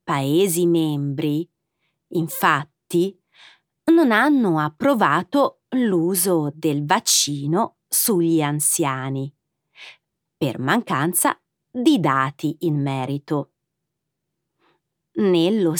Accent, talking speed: native, 70 wpm